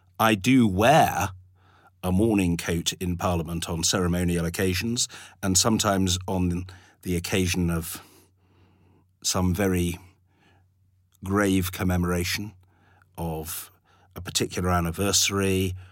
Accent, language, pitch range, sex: British, English, 85-95 Hz, male